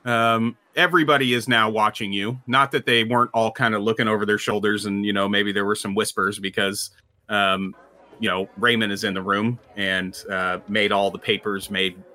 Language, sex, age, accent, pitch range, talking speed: English, male, 30-49, American, 100-130 Hz, 200 wpm